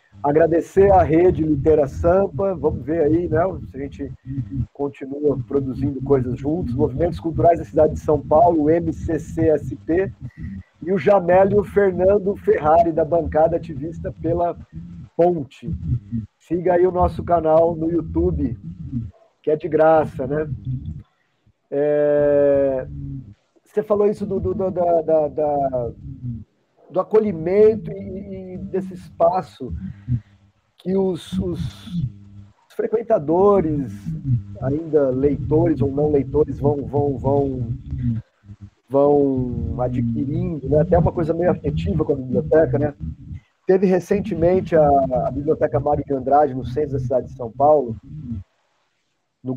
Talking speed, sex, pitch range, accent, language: 120 wpm, male, 130-170 Hz, Brazilian, Portuguese